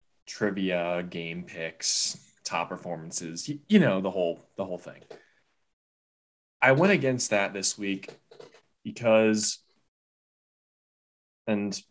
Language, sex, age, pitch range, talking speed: English, male, 20-39, 85-110 Hz, 100 wpm